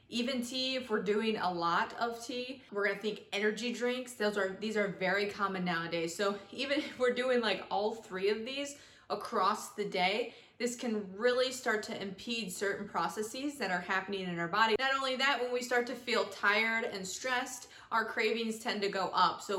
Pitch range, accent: 195-240 Hz, American